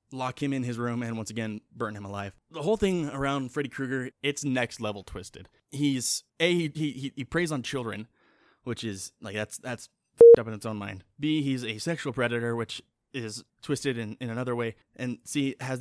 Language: English